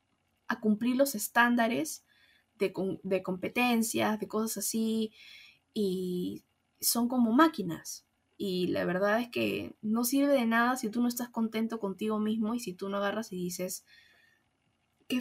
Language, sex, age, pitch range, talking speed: Spanish, female, 10-29, 185-230 Hz, 150 wpm